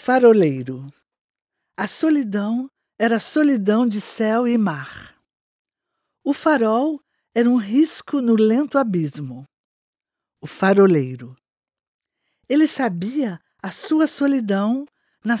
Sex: female